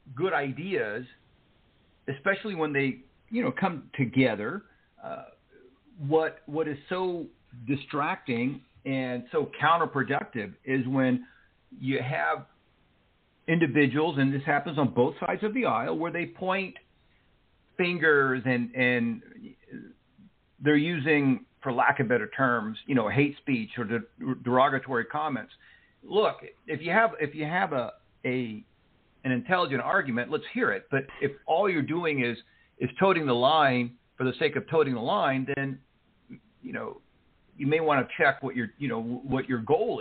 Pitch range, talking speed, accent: 125-155 Hz, 150 wpm, American